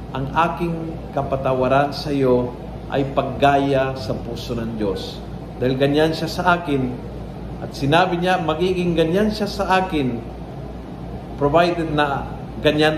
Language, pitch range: Filipino, 135-170 Hz